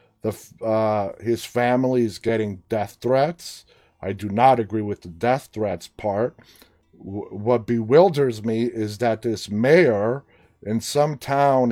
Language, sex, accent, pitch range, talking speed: English, male, American, 110-140 Hz, 135 wpm